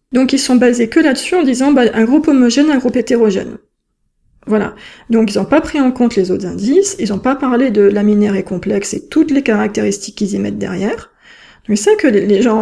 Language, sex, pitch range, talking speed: French, female, 210-275 Hz, 230 wpm